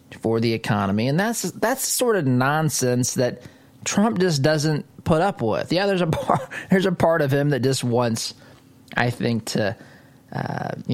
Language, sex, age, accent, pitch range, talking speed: English, male, 20-39, American, 120-140 Hz, 175 wpm